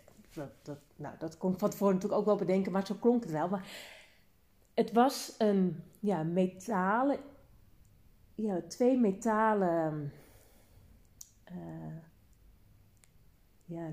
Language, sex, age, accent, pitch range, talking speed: Dutch, female, 40-59, Dutch, 175-220 Hz, 120 wpm